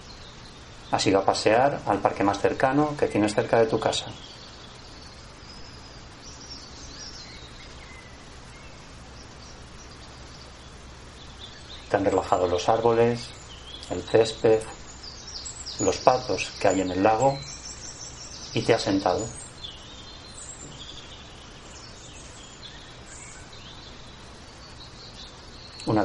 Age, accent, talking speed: 40-59, Spanish, 75 wpm